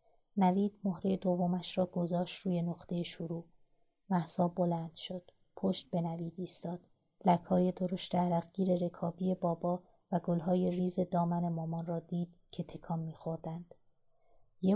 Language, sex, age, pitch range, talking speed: Persian, female, 30-49, 170-185 Hz, 140 wpm